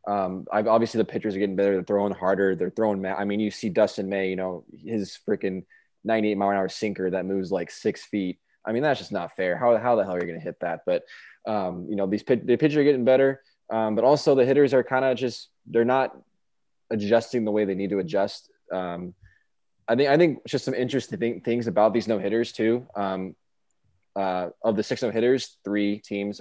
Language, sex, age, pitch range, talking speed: English, male, 20-39, 100-115 Hz, 235 wpm